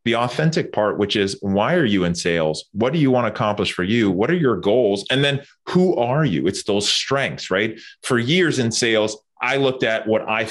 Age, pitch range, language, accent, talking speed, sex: 30-49, 105-135 Hz, English, American, 230 wpm, male